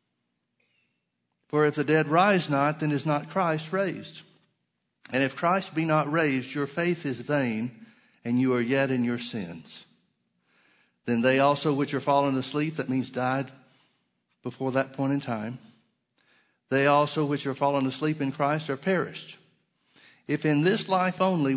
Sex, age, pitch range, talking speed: male, 60-79, 120-150 Hz, 160 wpm